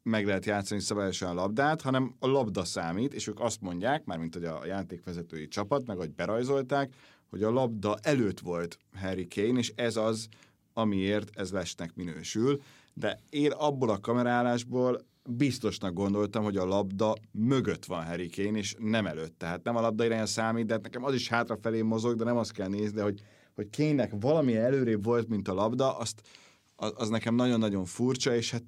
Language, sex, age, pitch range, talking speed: Hungarian, male, 30-49, 100-125 Hz, 180 wpm